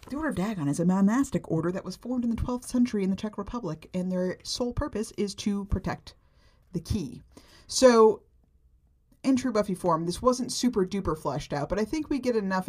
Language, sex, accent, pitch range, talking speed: English, female, American, 160-215 Hz, 215 wpm